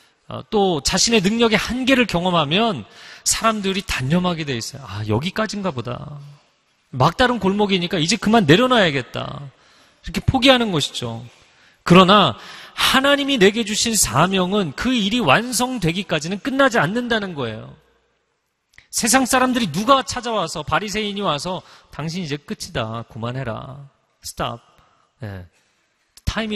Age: 30-49